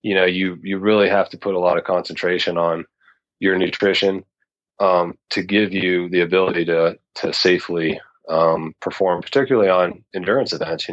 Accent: American